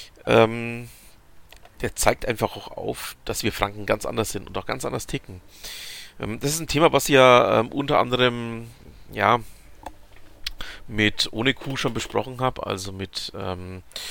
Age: 40-59